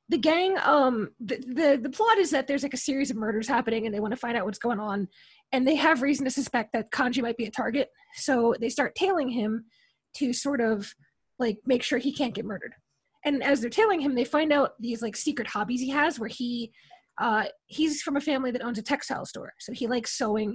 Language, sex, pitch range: English, female, 230-295 Hz